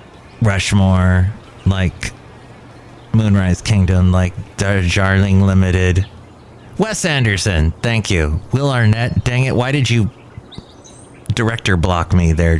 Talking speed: 110 wpm